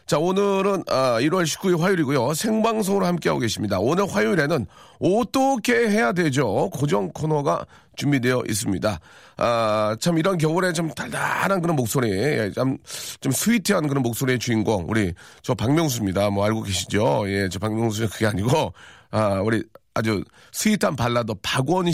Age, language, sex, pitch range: 40-59, Korean, male, 110-165 Hz